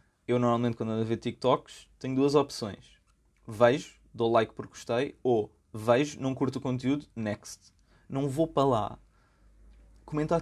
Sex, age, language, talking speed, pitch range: male, 20-39, Portuguese, 155 wpm, 105-130 Hz